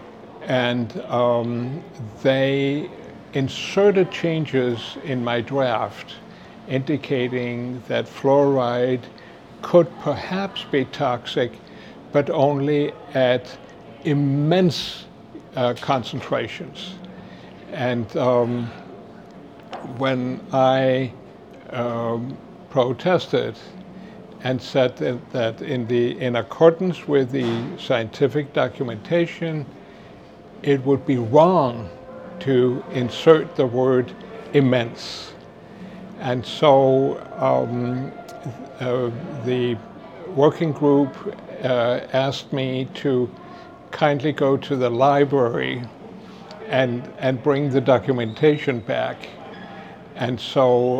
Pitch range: 125-150 Hz